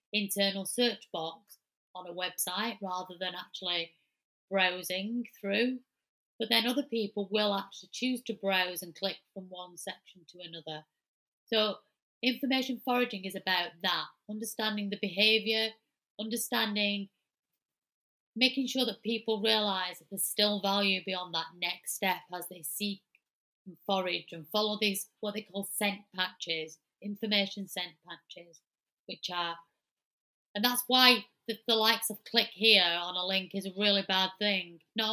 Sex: female